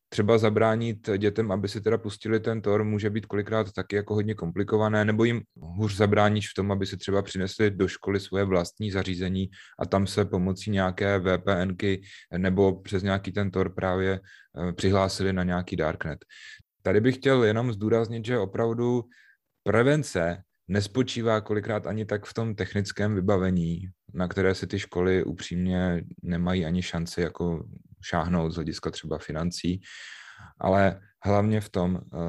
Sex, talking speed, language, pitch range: male, 150 wpm, Czech, 90-105 Hz